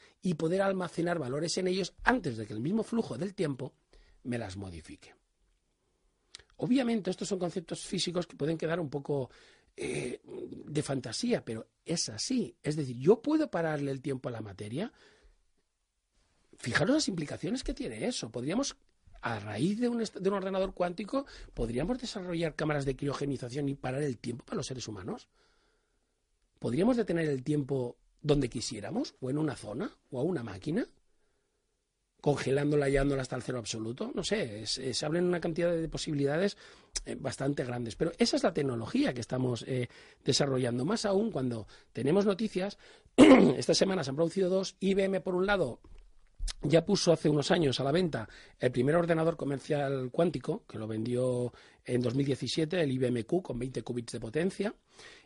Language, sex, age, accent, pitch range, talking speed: Spanish, male, 40-59, Spanish, 130-195 Hz, 165 wpm